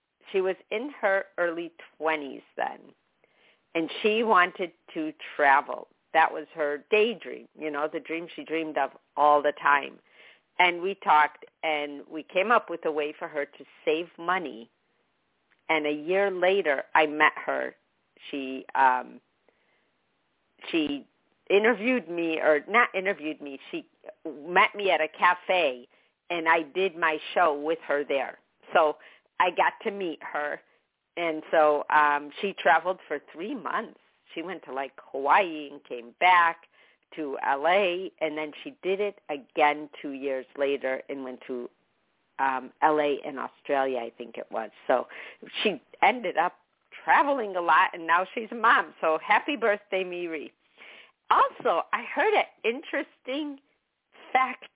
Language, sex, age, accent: English, female, 50-69, American